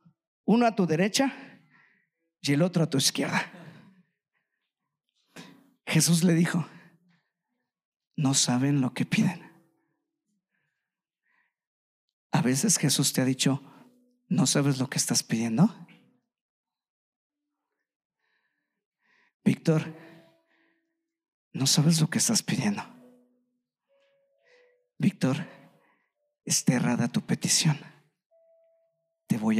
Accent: Mexican